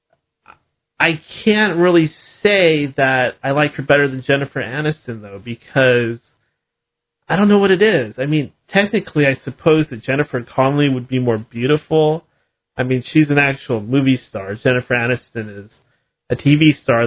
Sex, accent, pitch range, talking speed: male, American, 120-150 Hz, 160 wpm